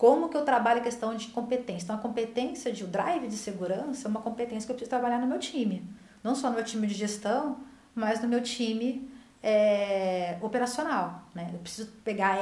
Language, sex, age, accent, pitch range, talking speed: Portuguese, female, 40-59, Brazilian, 180-235 Hz, 210 wpm